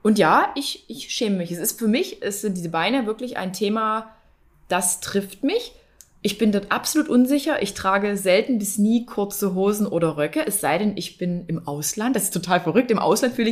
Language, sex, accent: German, female, German